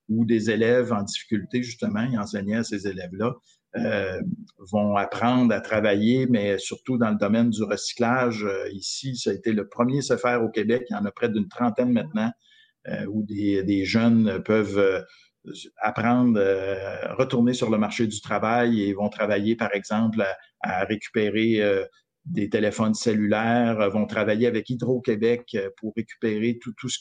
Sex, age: male, 50-69